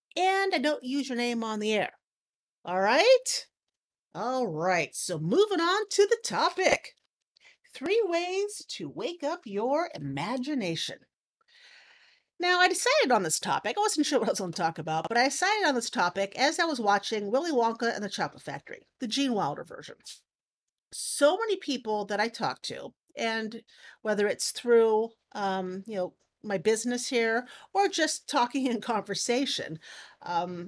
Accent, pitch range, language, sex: American, 200-310 Hz, English, female